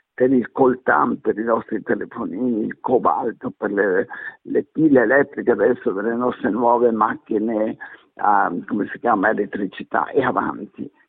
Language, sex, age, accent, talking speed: Italian, male, 60-79, native, 145 wpm